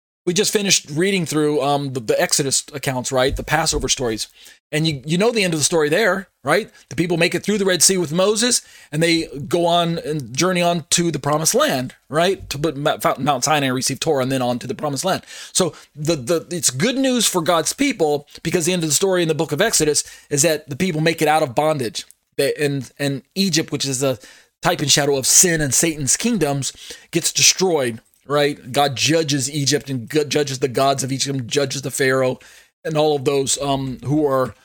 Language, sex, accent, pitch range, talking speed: English, male, American, 140-175 Hz, 225 wpm